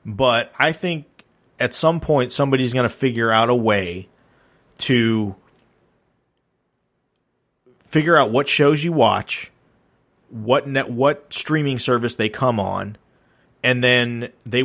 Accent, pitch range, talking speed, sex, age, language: American, 105-125 Hz, 125 wpm, male, 30-49, English